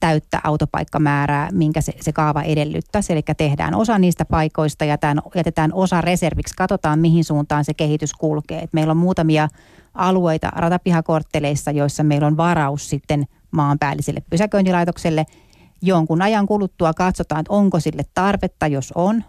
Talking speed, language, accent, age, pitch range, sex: 135 wpm, Finnish, native, 30-49, 150-170 Hz, female